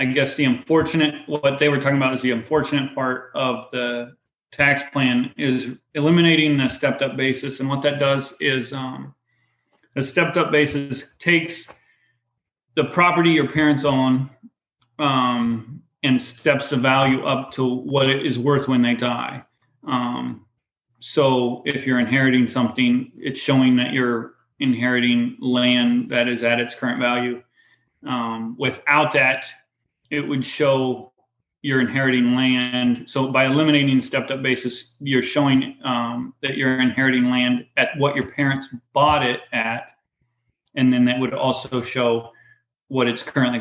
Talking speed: 150 wpm